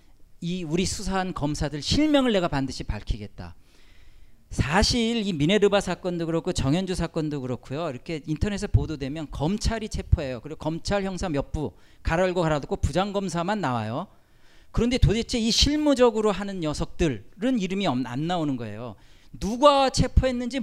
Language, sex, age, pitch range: Korean, male, 40-59, 130-200 Hz